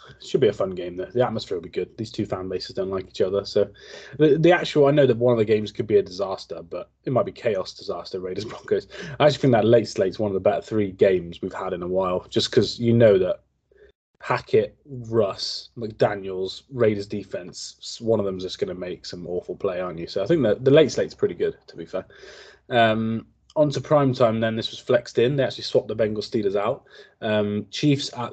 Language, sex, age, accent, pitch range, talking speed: English, male, 20-39, British, 100-130 Hz, 235 wpm